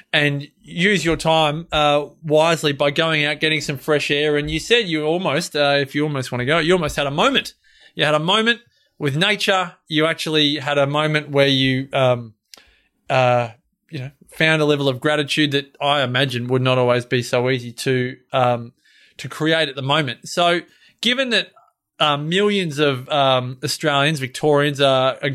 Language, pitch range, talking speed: English, 130-165 Hz, 185 wpm